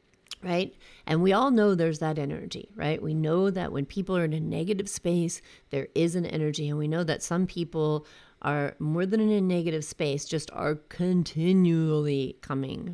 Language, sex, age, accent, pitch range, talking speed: English, female, 40-59, American, 155-200 Hz, 185 wpm